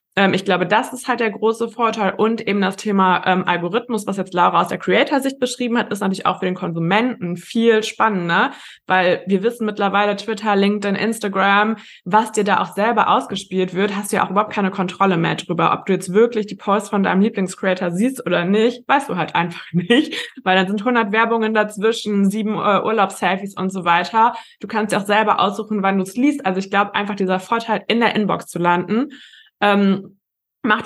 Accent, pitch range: German, 185-220 Hz